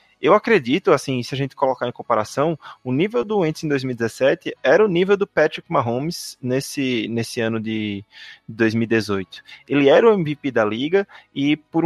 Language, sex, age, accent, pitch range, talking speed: Portuguese, male, 20-39, Brazilian, 120-160 Hz, 170 wpm